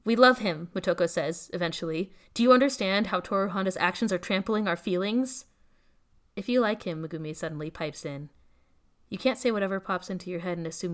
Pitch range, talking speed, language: 165-195 Hz, 190 wpm, English